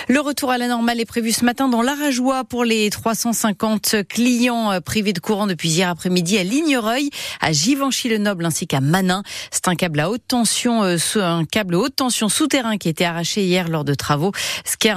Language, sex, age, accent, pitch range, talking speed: French, female, 40-59, French, 175-235 Hz, 200 wpm